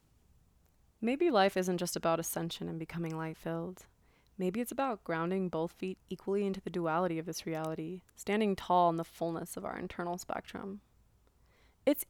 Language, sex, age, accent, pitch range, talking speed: English, female, 20-39, American, 170-210 Hz, 160 wpm